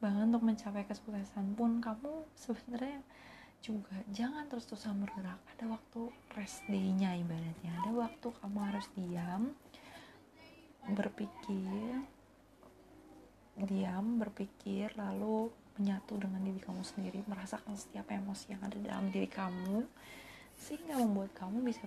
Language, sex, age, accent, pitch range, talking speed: Indonesian, female, 20-39, native, 195-235 Hz, 120 wpm